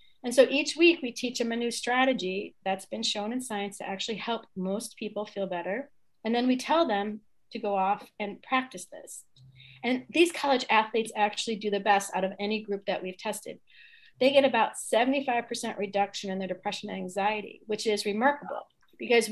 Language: English